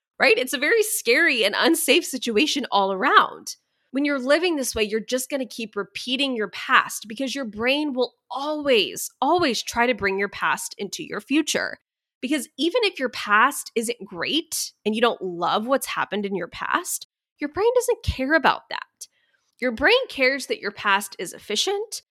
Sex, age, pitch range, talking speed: female, 20-39, 200-285 Hz, 180 wpm